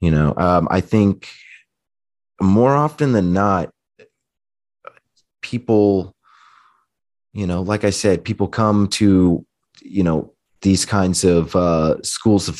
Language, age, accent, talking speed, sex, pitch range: English, 30-49, American, 125 wpm, male, 85-100 Hz